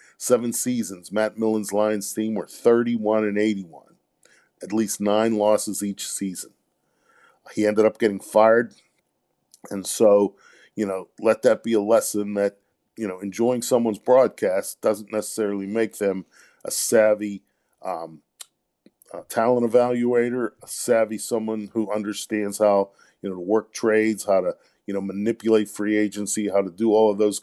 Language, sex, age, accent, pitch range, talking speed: English, male, 50-69, American, 100-110 Hz, 155 wpm